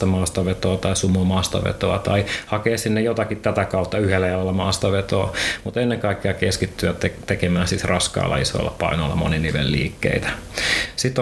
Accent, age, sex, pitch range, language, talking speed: native, 30-49, male, 90-105 Hz, Finnish, 125 wpm